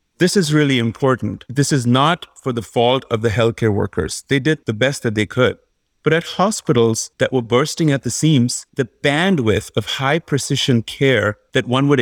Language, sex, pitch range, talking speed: English, male, 110-135 Hz, 195 wpm